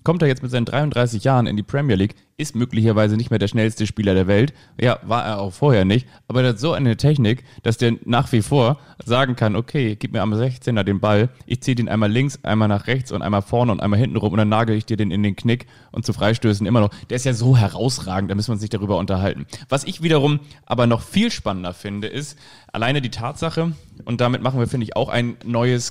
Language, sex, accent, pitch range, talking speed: German, male, German, 105-125 Hz, 250 wpm